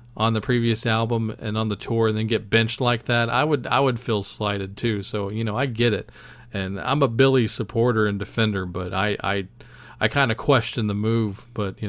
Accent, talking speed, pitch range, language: American, 225 wpm, 105-130 Hz, English